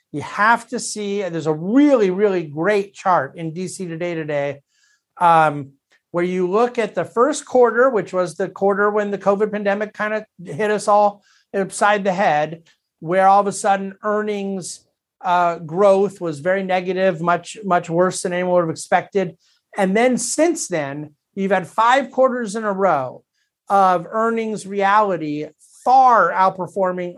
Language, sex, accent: English, male, American